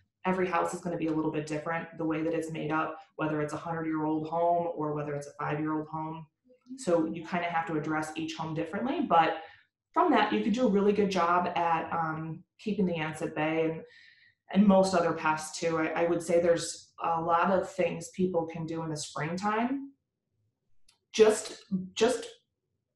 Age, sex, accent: 20-39, female, American